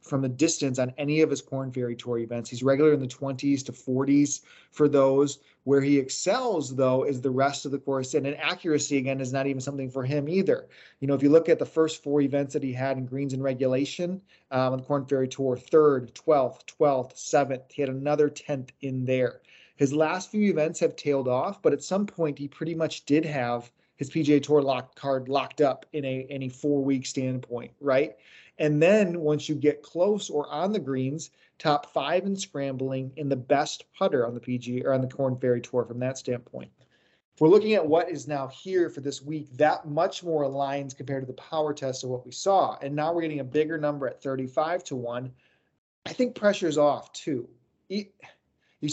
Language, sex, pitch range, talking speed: English, male, 135-160 Hz, 215 wpm